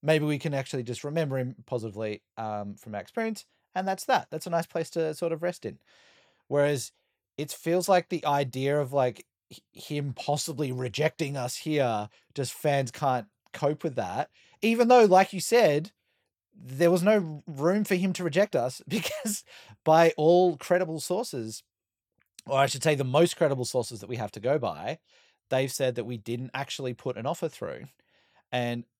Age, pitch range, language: 30-49, 125-170 Hz, English